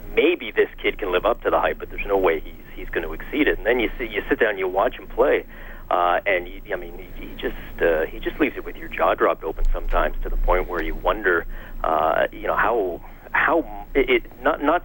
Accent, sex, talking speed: American, male, 250 wpm